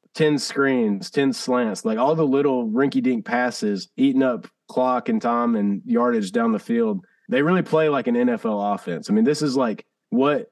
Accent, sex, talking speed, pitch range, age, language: American, male, 190 wpm, 140-230 Hz, 30-49, English